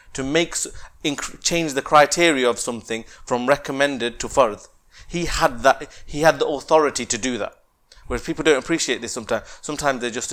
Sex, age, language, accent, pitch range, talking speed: male, 30-49, English, British, 120-145 Hz, 175 wpm